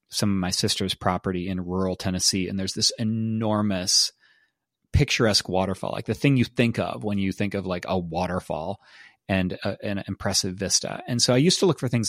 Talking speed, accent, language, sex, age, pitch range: 200 wpm, American, English, male, 30-49, 95-120 Hz